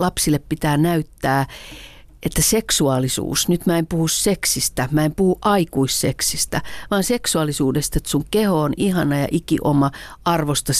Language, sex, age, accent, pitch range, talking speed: Finnish, female, 40-59, native, 140-175 Hz, 140 wpm